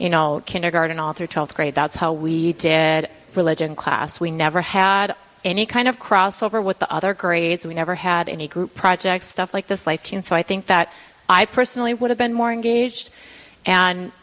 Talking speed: 200 wpm